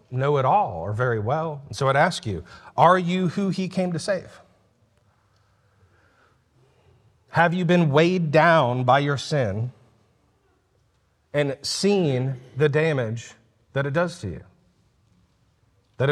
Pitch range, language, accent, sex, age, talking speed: 105-150 Hz, English, American, male, 40-59, 135 wpm